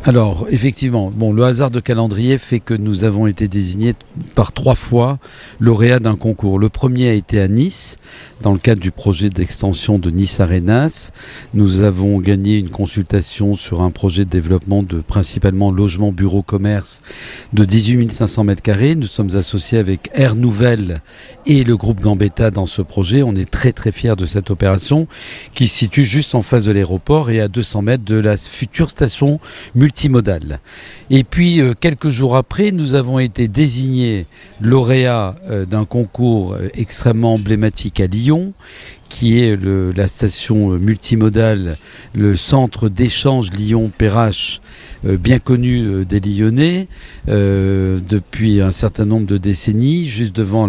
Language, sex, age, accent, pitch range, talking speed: French, male, 50-69, French, 100-125 Hz, 155 wpm